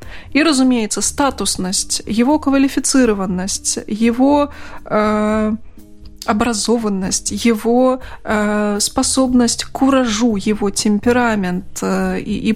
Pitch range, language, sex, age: 200-245 Hz, Russian, female, 20-39